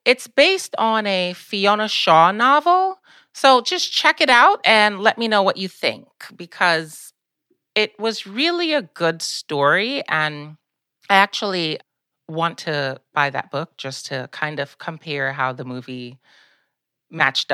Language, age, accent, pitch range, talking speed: English, 30-49, American, 155-235 Hz, 145 wpm